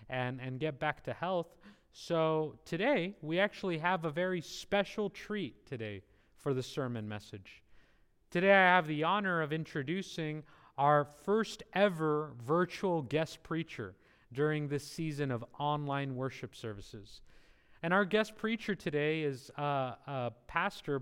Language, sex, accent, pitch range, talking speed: English, male, American, 130-175 Hz, 140 wpm